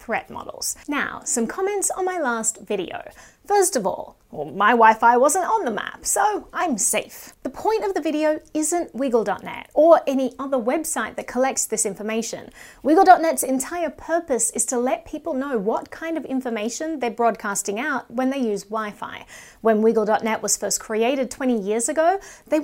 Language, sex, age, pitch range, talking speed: English, female, 30-49, 230-320 Hz, 175 wpm